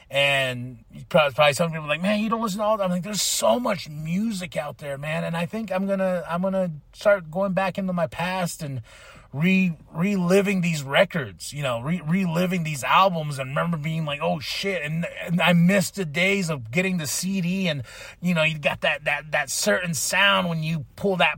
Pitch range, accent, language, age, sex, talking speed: 130-175 Hz, American, English, 30-49, male, 215 wpm